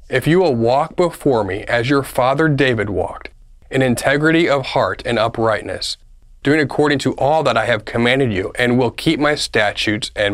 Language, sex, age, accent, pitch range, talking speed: English, male, 30-49, American, 115-150 Hz, 185 wpm